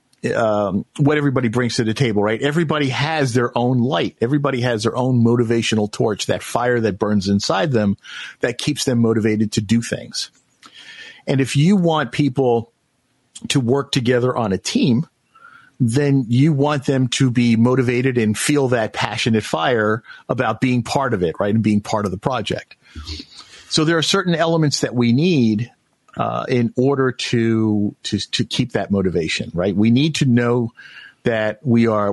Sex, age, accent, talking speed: male, 50-69, American, 170 wpm